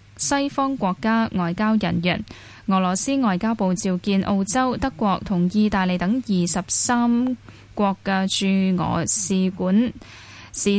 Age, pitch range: 10-29, 180-230 Hz